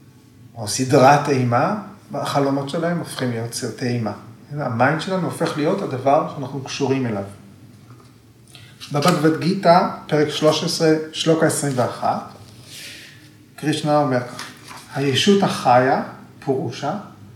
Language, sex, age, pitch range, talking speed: Hebrew, male, 40-59, 120-155 Hz, 100 wpm